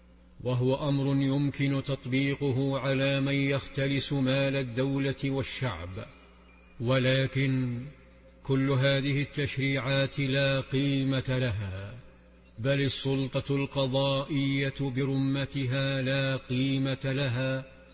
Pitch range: 130-135 Hz